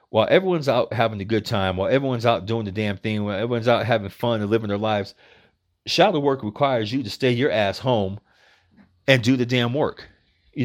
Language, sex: English, male